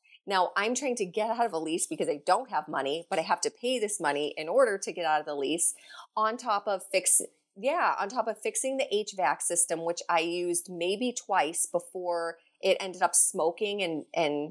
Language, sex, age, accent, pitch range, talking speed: English, female, 30-49, American, 165-200 Hz, 220 wpm